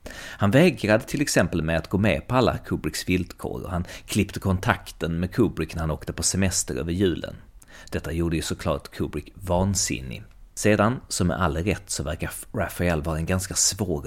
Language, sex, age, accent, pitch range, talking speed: Swedish, male, 30-49, native, 80-105 Hz, 185 wpm